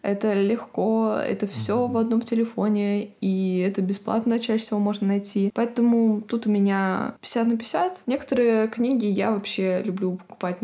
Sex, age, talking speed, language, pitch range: female, 20-39, 150 wpm, Russian, 195-235 Hz